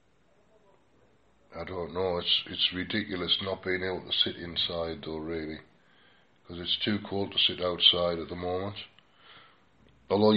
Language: English